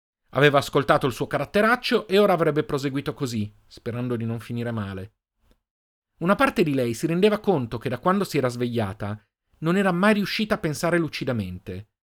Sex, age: male, 40-59